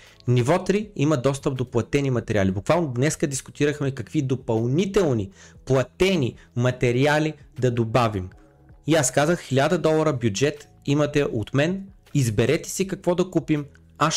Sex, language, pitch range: male, Bulgarian, 110-145 Hz